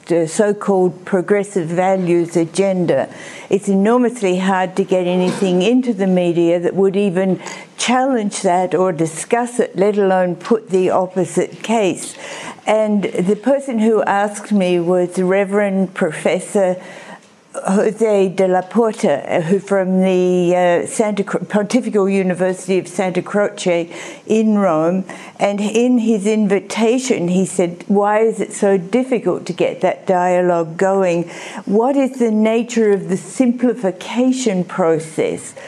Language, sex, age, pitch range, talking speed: English, female, 60-79, 180-210 Hz, 130 wpm